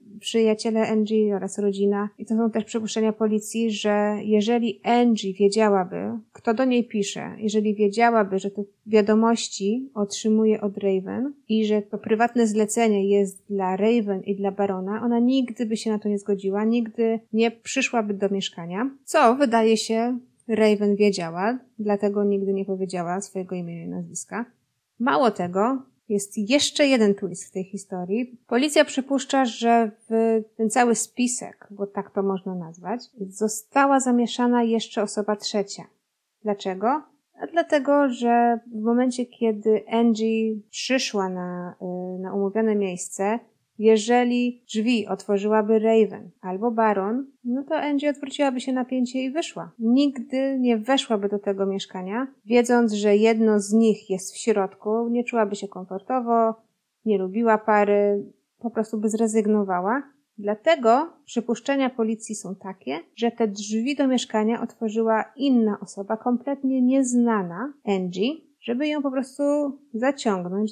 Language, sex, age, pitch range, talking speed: Polish, female, 30-49, 205-240 Hz, 135 wpm